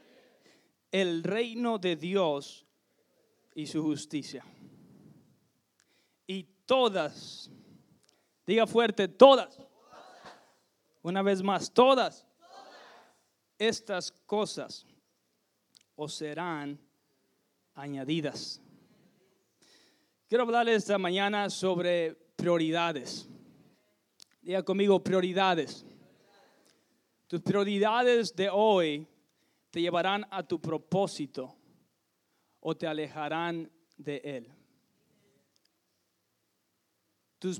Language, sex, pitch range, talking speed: English, male, 155-195 Hz, 70 wpm